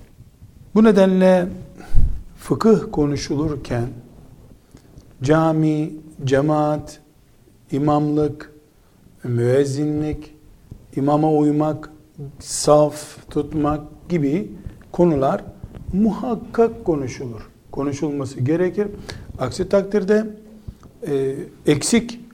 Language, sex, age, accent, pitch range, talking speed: Turkish, male, 50-69, native, 130-175 Hz, 60 wpm